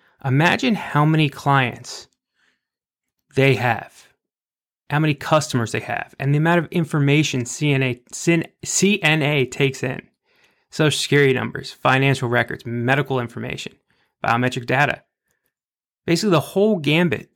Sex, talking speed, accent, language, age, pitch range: male, 115 wpm, American, English, 30-49, 130-175 Hz